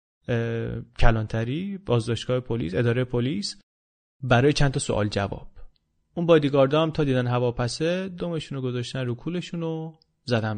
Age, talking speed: 30-49, 125 wpm